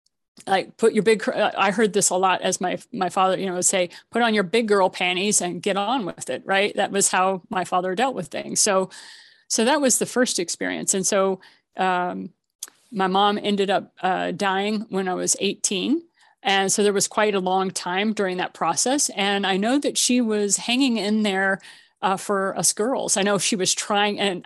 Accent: American